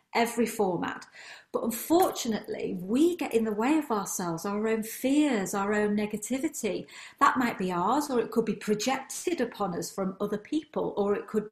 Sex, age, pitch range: female, 40-59, 185-220 Hz